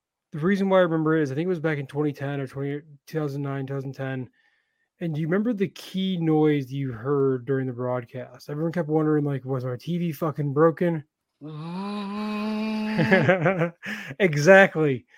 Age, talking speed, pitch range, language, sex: 20-39, 160 wpm, 145-185 Hz, English, male